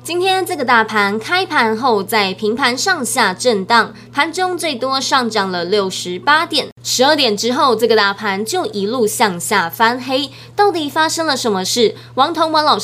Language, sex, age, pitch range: Chinese, female, 20-39, 215-290 Hz